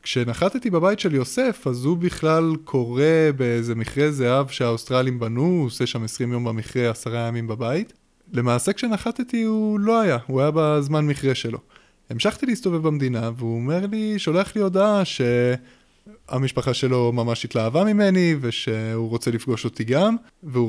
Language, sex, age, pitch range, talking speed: Hebrew, male, 20-39, 120-155 Hz, 150 wpm